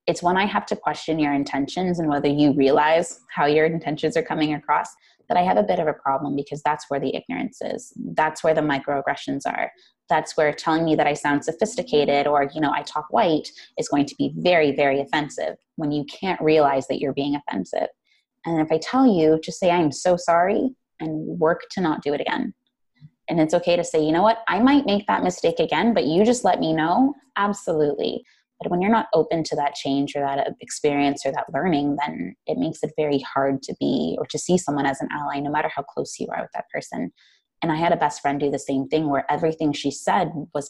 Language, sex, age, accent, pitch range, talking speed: English, female, 20-39, American, 145-175 Hz, 230 wpm